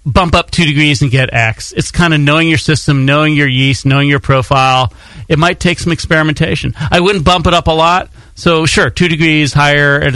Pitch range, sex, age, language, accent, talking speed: 125-155 Hz, male, 40-59, English, American, 220 wpm